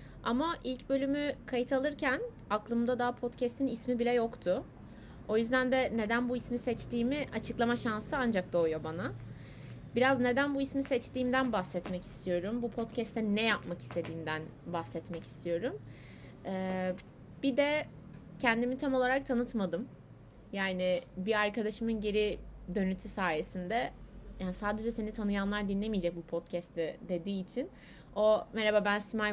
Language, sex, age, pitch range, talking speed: Turkish, female, 30-49, 175-235 Hz, 130 wpm